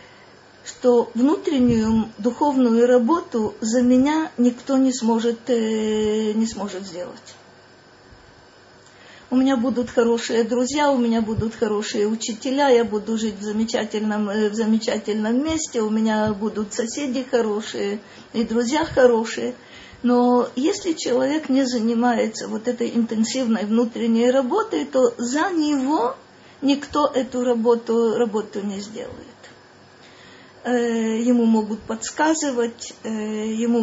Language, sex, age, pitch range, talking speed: Russian, female, 40-59, 220-260 Hz, 105 wpm